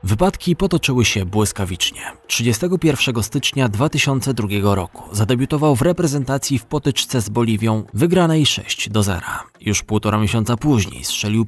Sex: male